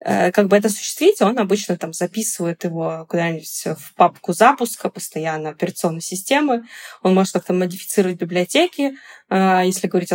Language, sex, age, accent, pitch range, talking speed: Russian, female, 20-39, native, 170-210 Hz, 135 wpm